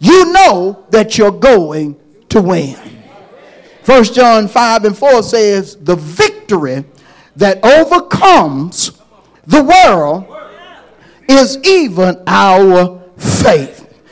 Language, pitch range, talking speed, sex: English, 195-285 Hz, 100 wpm, male